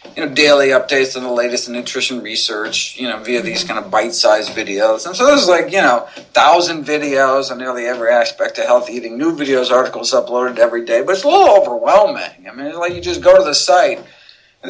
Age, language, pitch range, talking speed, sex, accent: 50-69, English, 130-200 Hz, 225 wpm, male, American